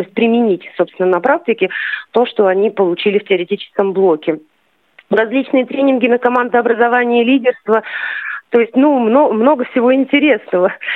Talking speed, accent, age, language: 130 wpm, native, 30-49, Russian